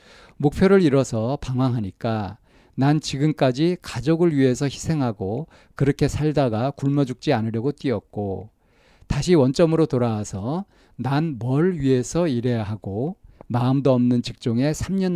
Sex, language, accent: male, Korean, native